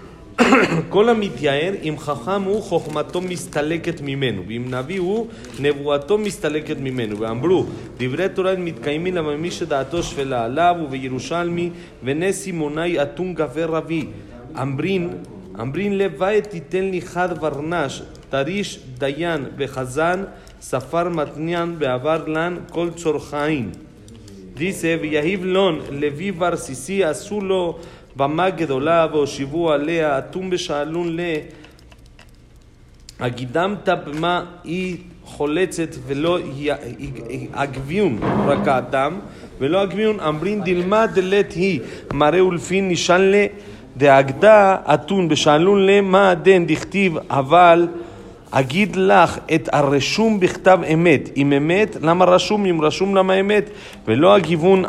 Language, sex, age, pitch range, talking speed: Spanish, male, 40-59, 145-185 Hz, 105 wpm